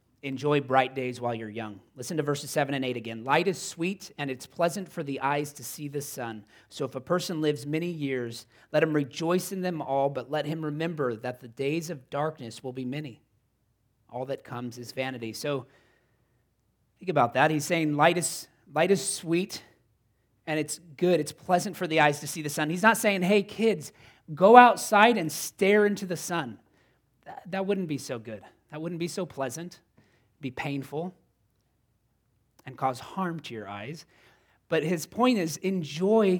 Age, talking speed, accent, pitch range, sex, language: 30-49, 190 wpm, American, 120-160 Hz, male, English